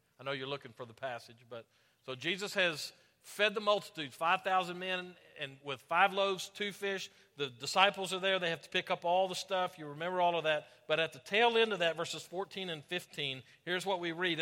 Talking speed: 225 wpm